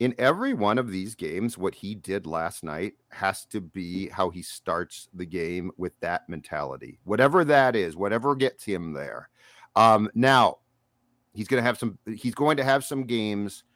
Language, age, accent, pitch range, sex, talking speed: English, 40-59, American, 95-125 Hz, male, 180 wpm